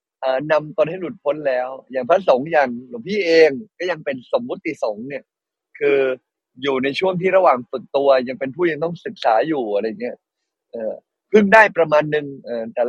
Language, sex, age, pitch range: Thai, male, 20-39, 140-200 Hz